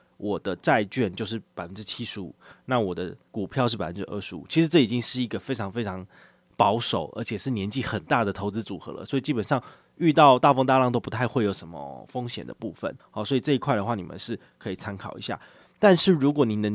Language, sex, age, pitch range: Chinese, male, 20-39, 105-135 Hz